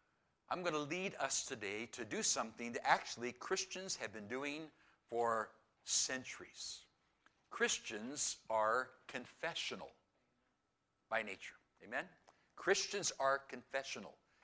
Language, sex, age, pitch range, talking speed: English, male, 60-79, 125-155 Hz, 110 wpm